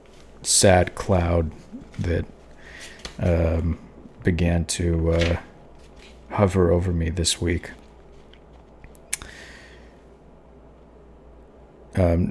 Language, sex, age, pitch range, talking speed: English, male, 40-59, 85-100 Hz, 65 wpm